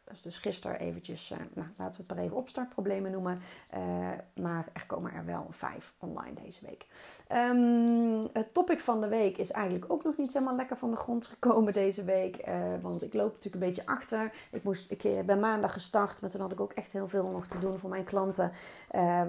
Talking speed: 215 wpm